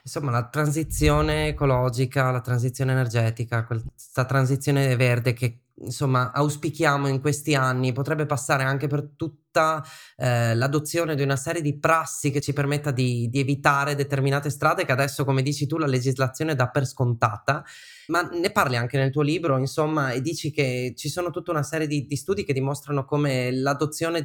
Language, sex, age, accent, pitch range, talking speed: Italian, male, 20-39, native, 125-150 Hz, 170 wpm